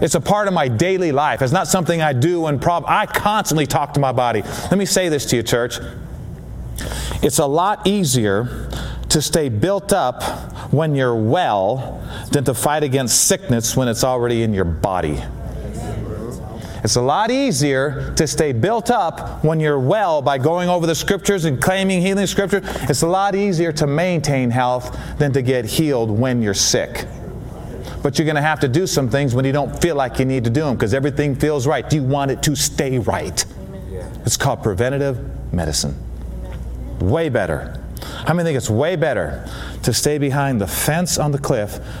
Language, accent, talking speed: English, American, 190 wpm